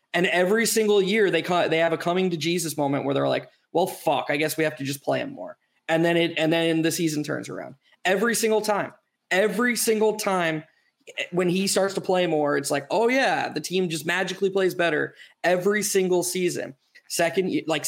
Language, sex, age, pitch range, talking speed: English, male, 20-39, 155-195 Hz, 210 wpm